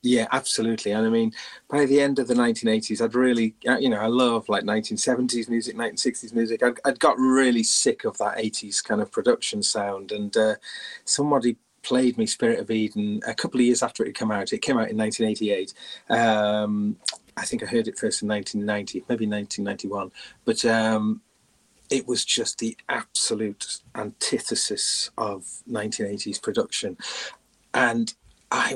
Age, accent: 30-49, British